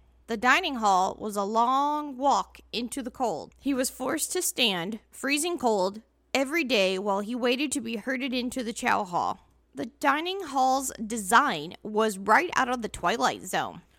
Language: English